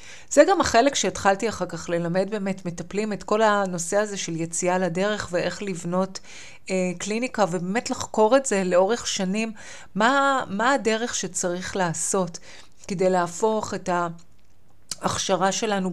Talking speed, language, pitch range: 135 wpm, Hebrew, 185-240 Hz